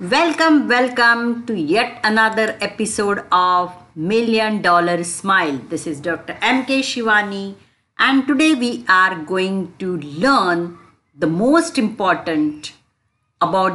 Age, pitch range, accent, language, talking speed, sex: 50-69, 145-220 Hz, native, Hindi, 120 wpm, female